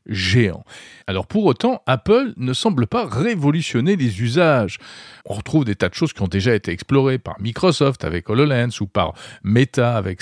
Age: 40-59